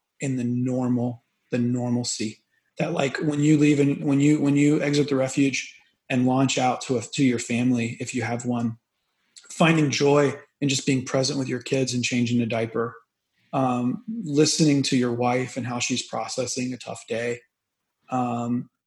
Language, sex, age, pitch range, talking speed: English, male, 30-49, 120-145 Hz, 180 wpm